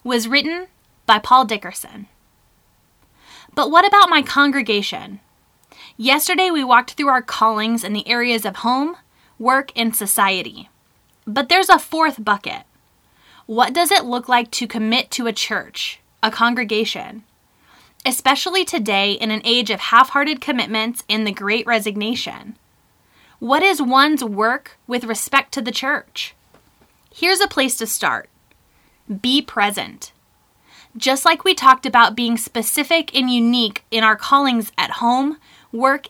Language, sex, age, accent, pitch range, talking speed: English, female, 10-29, American, 225-285 Hz, 140 wpm